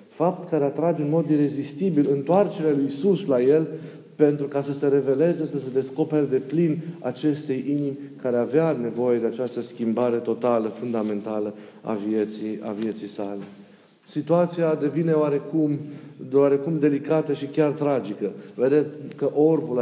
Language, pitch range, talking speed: Romanian, 125-155 Hz, 140 wpm